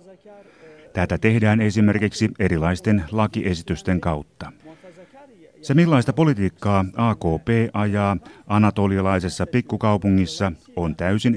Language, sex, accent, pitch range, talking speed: Finnish, male, native, 90-120 Hz, 80 wpm